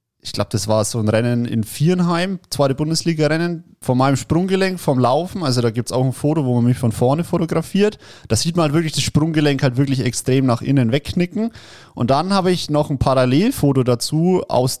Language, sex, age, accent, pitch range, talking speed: German, male, 30-49, German, 115-155 Hz, 205 wpm